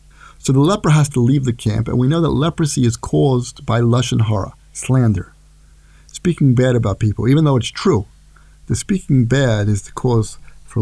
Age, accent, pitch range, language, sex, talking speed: 50-69, American, 110-140 Hz, English, male, 195 wpm